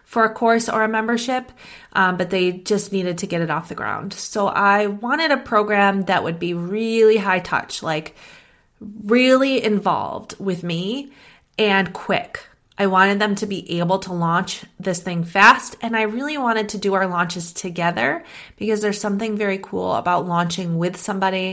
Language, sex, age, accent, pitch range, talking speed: English, female, 30-49, American, 175-215 Hz, 180 wpm